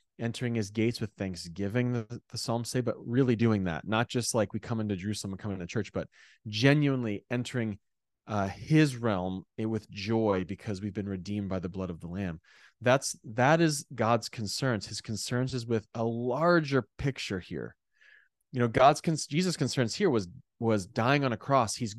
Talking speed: 190 wpm